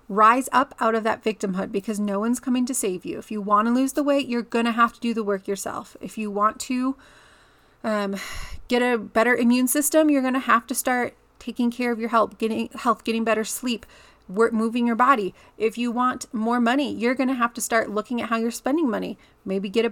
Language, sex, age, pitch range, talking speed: English, female, 30-49, 220-255 Hz, 235 wpm